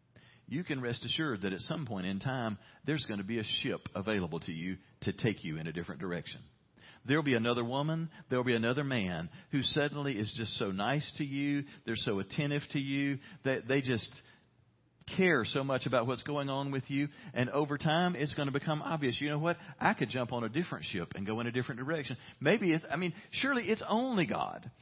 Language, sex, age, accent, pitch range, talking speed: English, male, 40-59, American, 105-145 Hz, 220 wpm